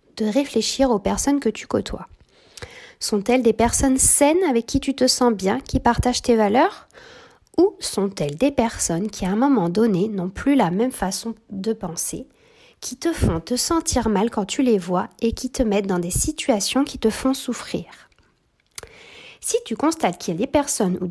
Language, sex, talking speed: French, female, 190 wpm